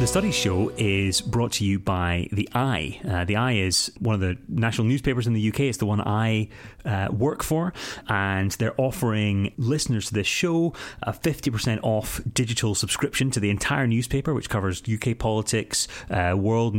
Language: English